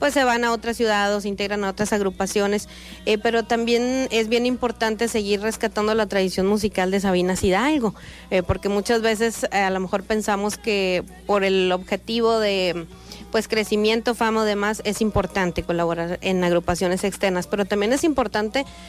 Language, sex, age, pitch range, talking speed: Spanish, female, 30-49, 195-225 Hz, 170 wpm